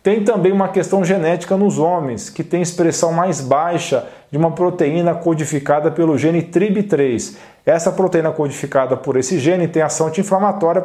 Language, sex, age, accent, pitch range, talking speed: Portuguese, male, 40-59, Brazilian, 160-195 Hz, 150 wpm